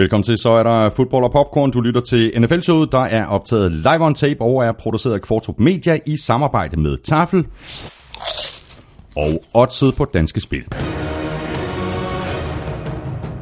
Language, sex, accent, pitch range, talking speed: Danish, male, native, 80-125 Hz, 150 wpm